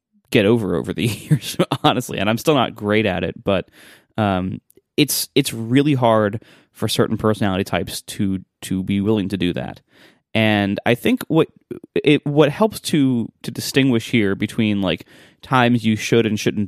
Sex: male